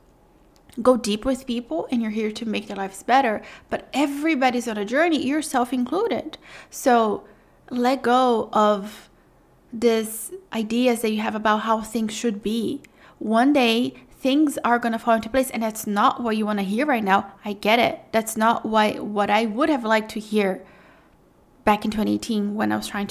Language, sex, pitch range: English, female, 215-255 Hz